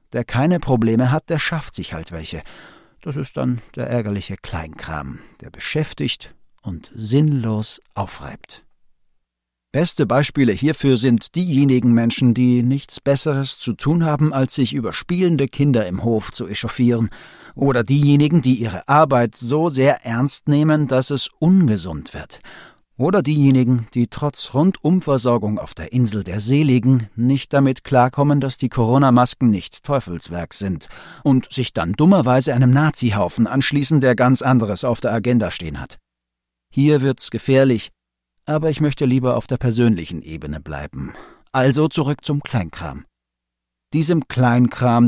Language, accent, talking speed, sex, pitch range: German, German, 140 wpm, male, 110-145 Hz